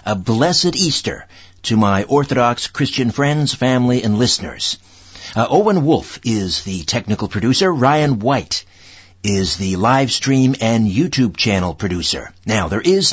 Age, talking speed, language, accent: 60-79, 140 wpm, English, American